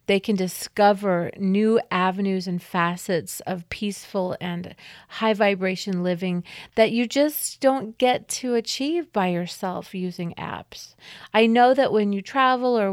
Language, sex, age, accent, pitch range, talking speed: English, female, 40-59, American, 185-230 Hz, 145 wpm